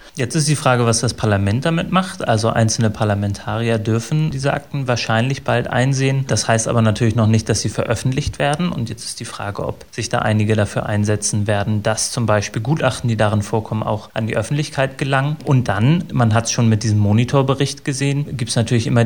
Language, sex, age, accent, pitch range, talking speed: German, male, 30-49, German, 110-130 Hz, 210 wpm